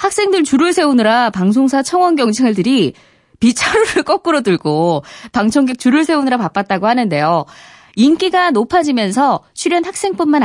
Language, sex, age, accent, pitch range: Korean, female, 20-39, native, 200-320 Hz